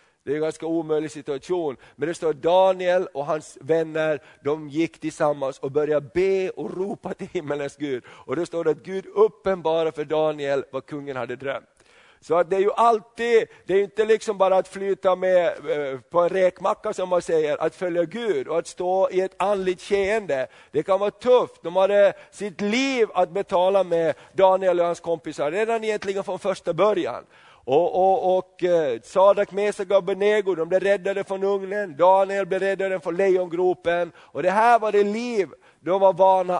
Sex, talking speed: male, 180 wpm